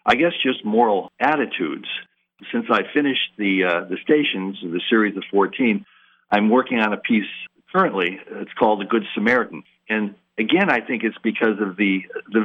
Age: 60-79